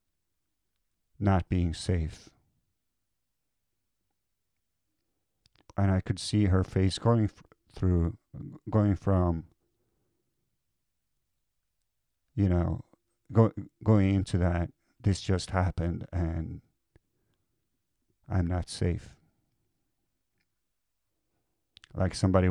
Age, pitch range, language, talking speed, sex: 50-69, 90-105 Hz, English, 70 wpm, male